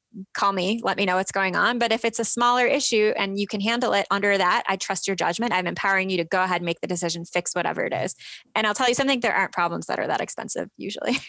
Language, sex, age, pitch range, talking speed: English, female, 20-39, 185-225 Hz, 275 wpm